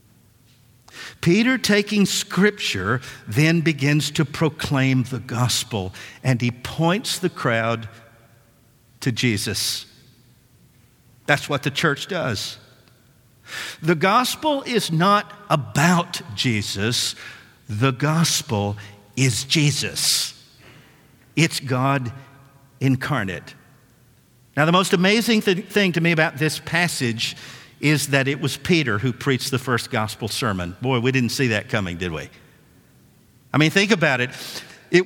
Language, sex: English, male